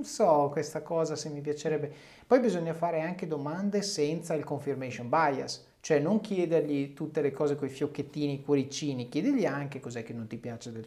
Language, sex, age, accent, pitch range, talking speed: Italian, male, 30-49, native, 130-170 Hz, 180 wpm